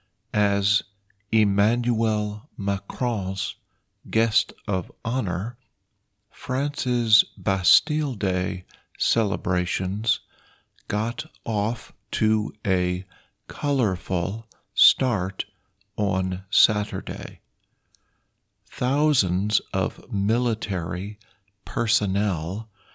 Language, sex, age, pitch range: Thai, male, 50-69, 100-120 Hz